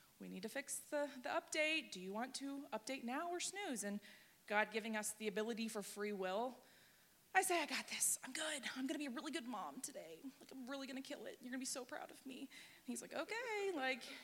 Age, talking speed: 20-39, 255 wpm